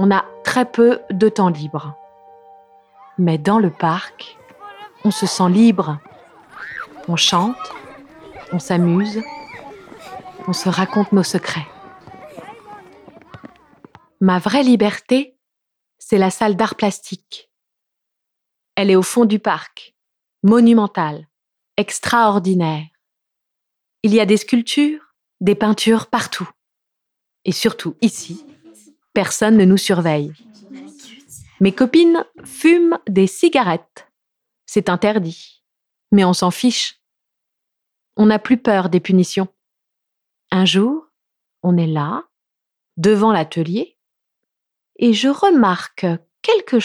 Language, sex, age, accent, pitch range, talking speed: German, female, 30-49, French, 180-250 Hz, 105 wpm